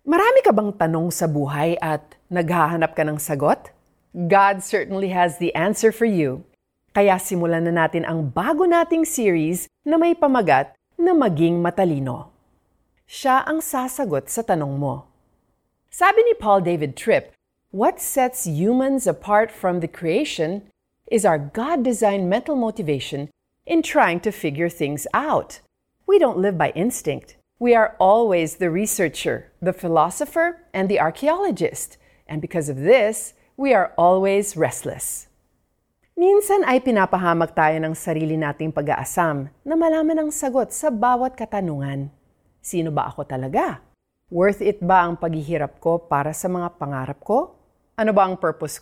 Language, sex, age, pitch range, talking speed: Filipino, female, 40-59, 165-250 Hz, 145 wpm